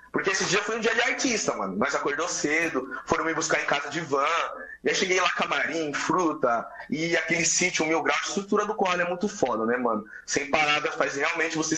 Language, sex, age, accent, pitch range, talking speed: Portuguese, male, 20-39, Brazilian, 145-175 Hz, 230 wpm